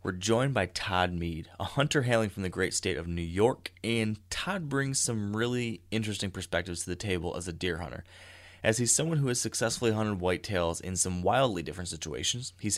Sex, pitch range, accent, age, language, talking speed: male, 90-105 Hz, American, 30-49, English, 200 wpm